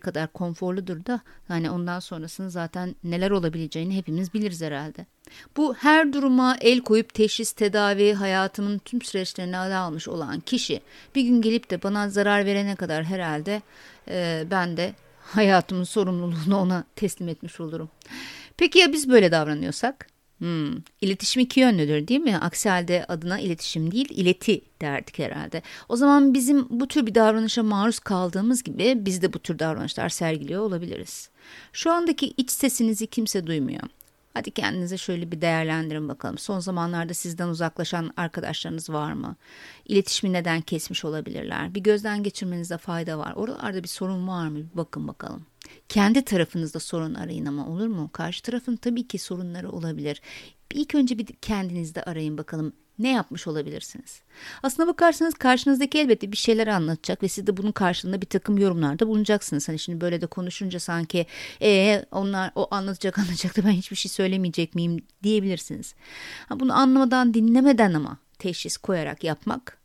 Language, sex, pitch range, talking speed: Turkish, female, 170-225 Hz, 150 wpm